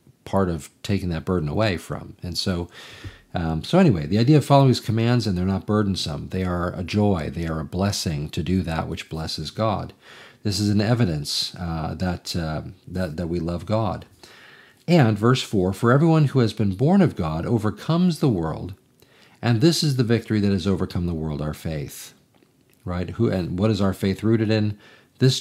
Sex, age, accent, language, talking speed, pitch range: male, 50-69, American, English, 200 wpm, 85-115 Hz